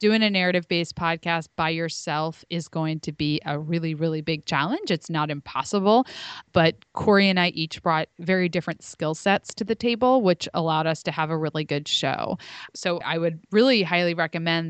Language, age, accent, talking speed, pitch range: English, 20-39, American, 190 wpm, 160-190 Hz